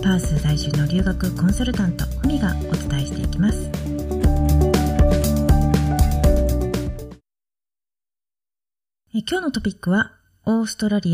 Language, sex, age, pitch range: Japanese, female, 40-59, 160-250 Hz